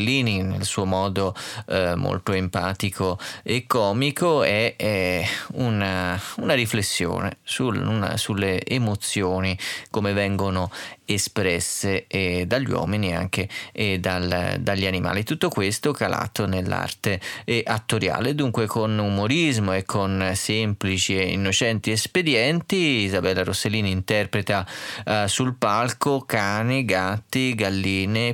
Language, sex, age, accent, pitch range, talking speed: Italian, male, 30-49, native, 95-125 Hz, 100 wpm